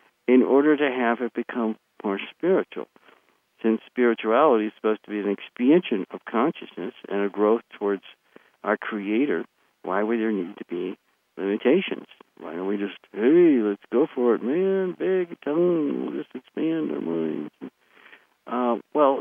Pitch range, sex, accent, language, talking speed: 100-125 Hz, male, American, English, 155 wpm